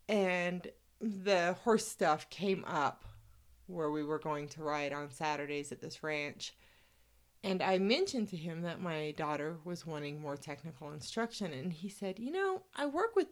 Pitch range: 145-185 Hz